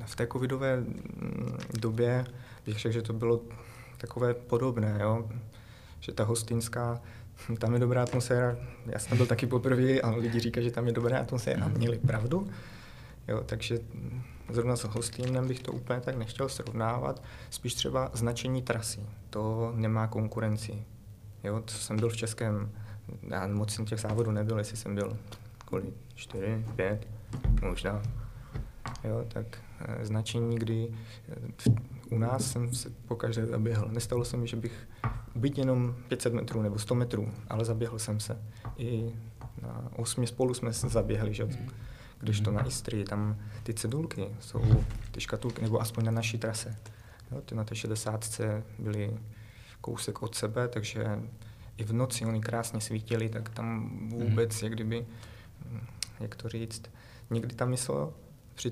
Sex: male